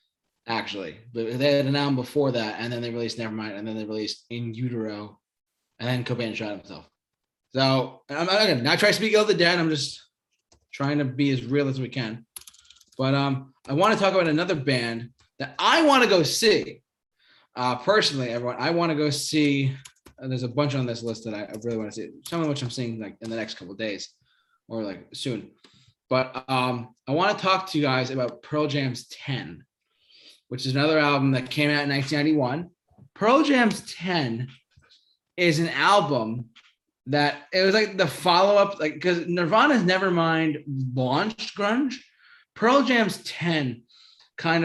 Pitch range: 125-165 Hz